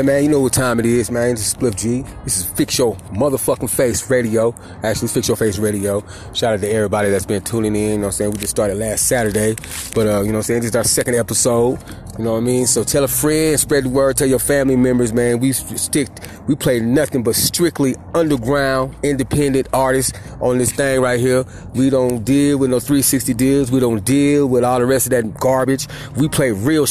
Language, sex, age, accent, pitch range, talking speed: English, male, 30-49, American, 115-145 Hz, 240 wpm